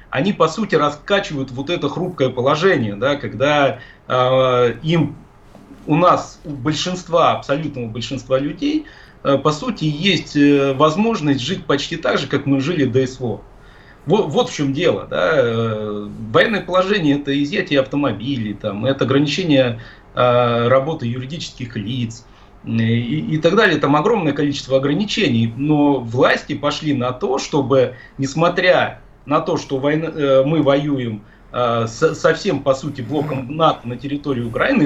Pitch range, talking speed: 125-155 Hz, 150 wpm